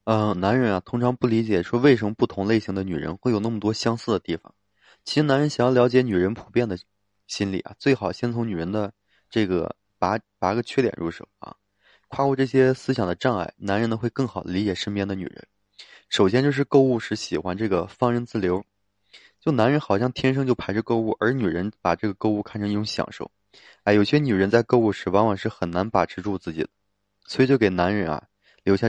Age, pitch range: 20-39, 95-120 Hz